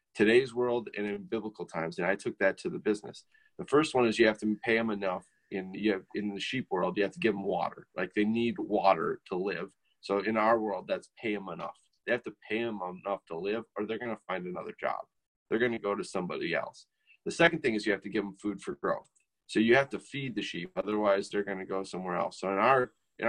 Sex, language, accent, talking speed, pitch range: male, English, American, 265 wpm, 100-125 Hz